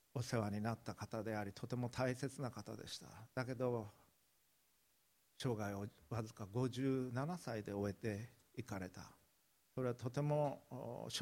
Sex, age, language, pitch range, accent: male, 50-69, Japanese, 115-145 Hz, native